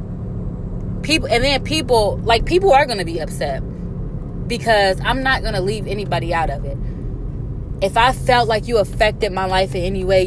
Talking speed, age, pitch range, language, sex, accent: 180 wpm, 20-39, 135-190 Hz, English, female, American